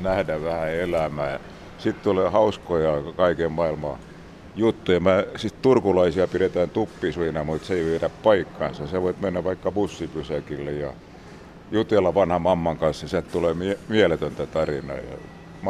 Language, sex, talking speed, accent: Finnish, male, 140 wpm, native